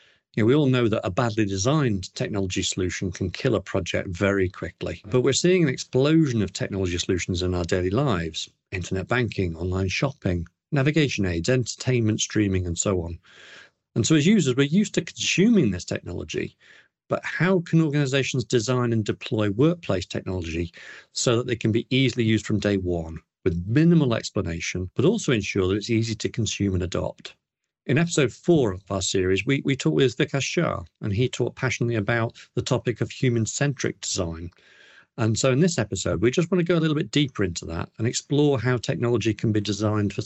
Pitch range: 95-140 Hz